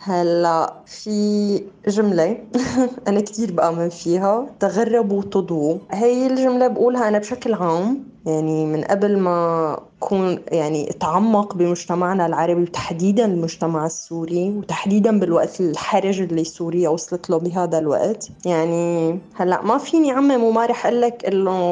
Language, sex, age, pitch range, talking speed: Arabic, female, 20-39, 170-220 Hz, 120 wpm